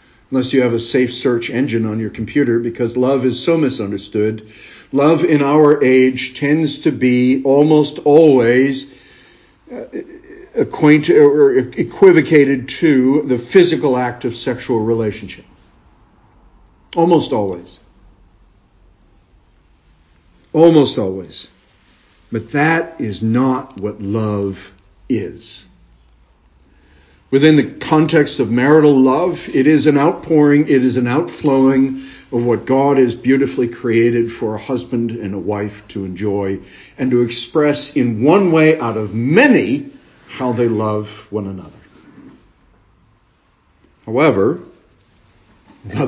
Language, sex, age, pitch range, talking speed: English, male, 50-69, 105-145 Hz, 115 wpm